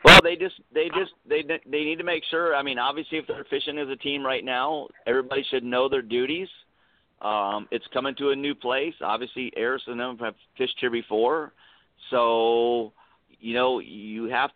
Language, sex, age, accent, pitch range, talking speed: English, male, 50-69, American, 115-140 Hz, 195 wpm